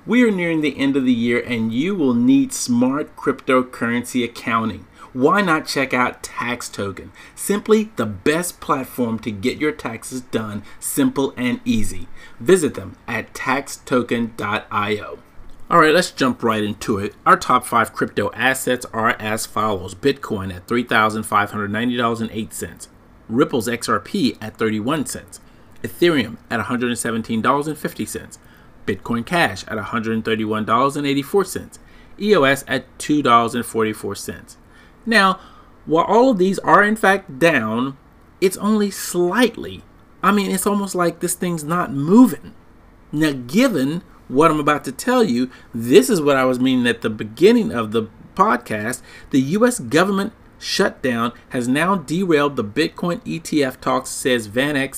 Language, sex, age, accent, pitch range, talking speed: English, male, 40-59, American, 115-185 Hz, 135 wpm